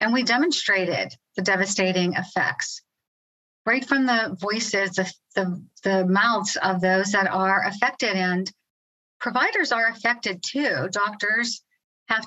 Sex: female